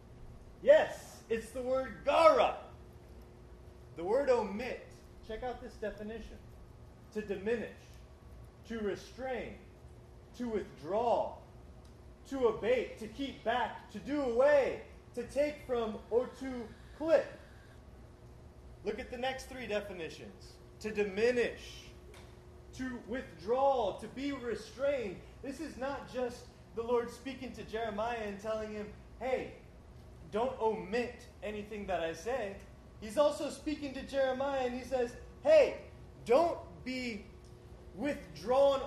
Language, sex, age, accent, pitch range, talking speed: English, male, 30-49, American, 210-260 Hz, 115 wpm